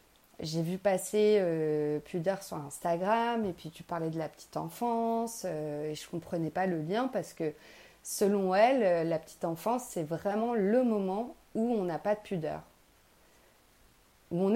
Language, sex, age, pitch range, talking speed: French, female, 30-49, 170-225 Hz, 175 wpm